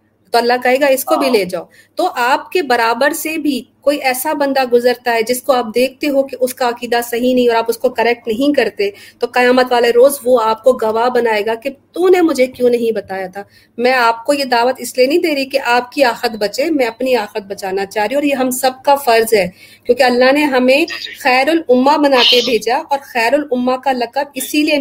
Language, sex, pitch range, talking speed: Urdu, female, 230-275 Hz, 240 wpm